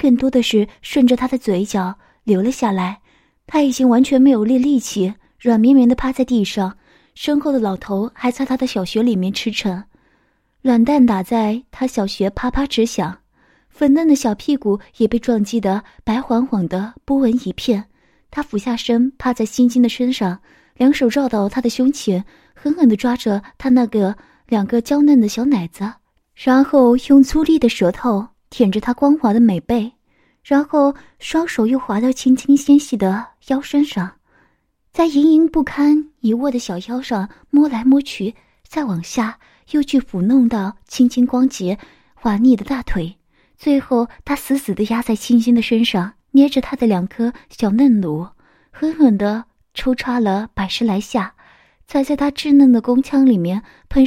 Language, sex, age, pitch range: Chinese, female, 20-39, 210-270 Hz